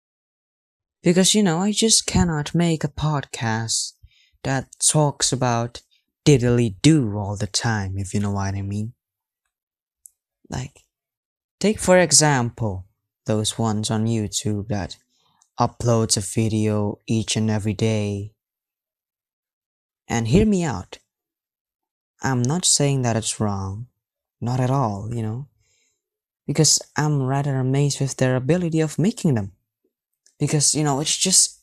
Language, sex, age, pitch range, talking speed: English, male, 20-39, 110-155 Hz, 130 wpm